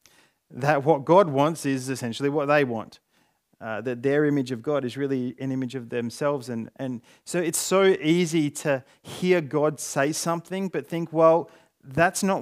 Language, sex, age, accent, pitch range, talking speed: English, male, 40-59, Australian, 130-155 Hz, 180 wpm